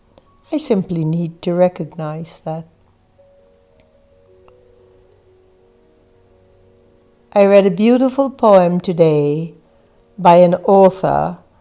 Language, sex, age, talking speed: English, female, 60-79, 80 wpm